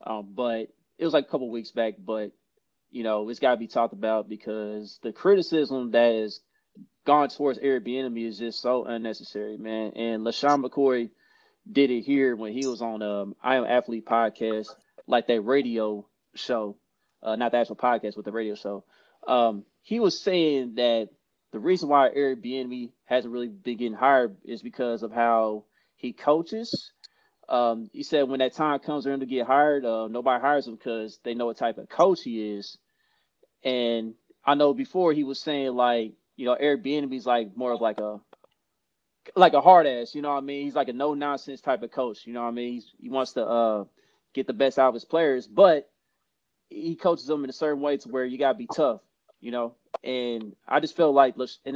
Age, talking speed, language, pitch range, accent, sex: 20-39, 205 wpm, English, 115-140 Hz, American, male